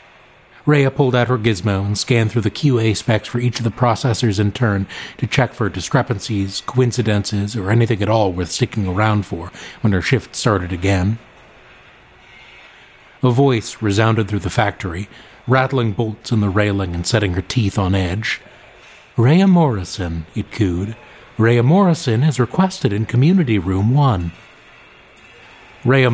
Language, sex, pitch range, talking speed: English, male, 100-125 Hz, 150 wpm